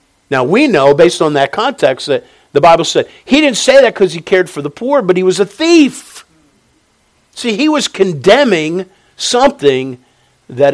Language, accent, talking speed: English, American, 180 wpm